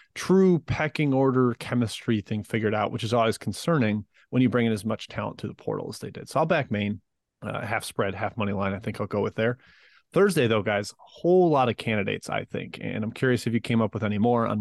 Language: English